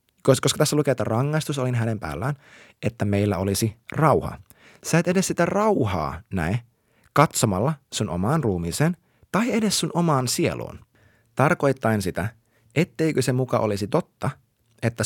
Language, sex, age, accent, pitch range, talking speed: Finnish, male, 30-49, native, 110-150 Hz, 140 wpm